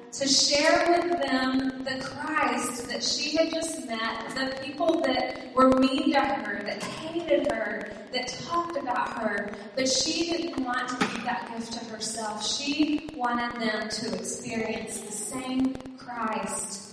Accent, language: American, English